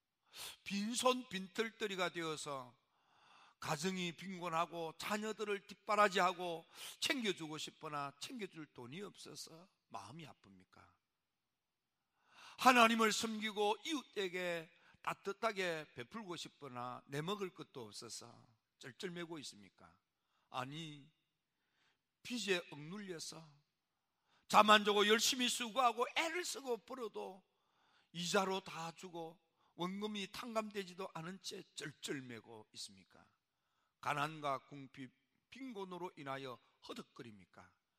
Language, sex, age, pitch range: Korean, male, 50-69, 145-210 Hz